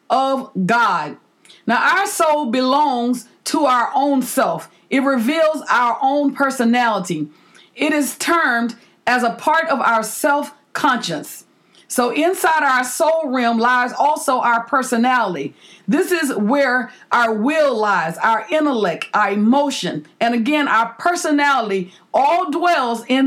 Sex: female